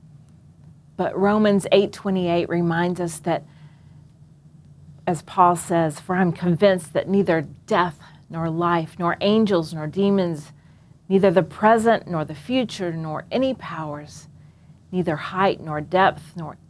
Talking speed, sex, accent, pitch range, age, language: 135 wpm, female, American, 150-190 Hz, 40-59, English